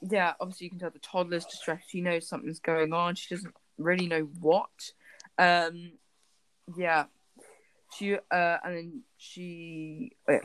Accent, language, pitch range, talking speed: British, English, 150-190 Hz, 145 wpm